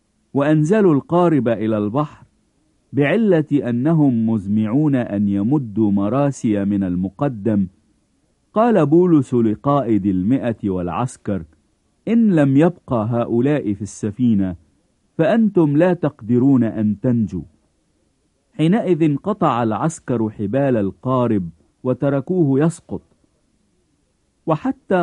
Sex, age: male, 50-69